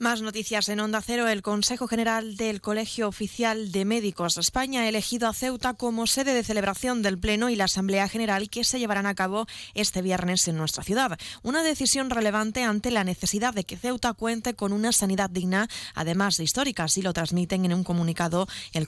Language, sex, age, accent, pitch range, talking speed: Spanish, female, 20-39, Spanish, 180-225 Hz, 200 wpm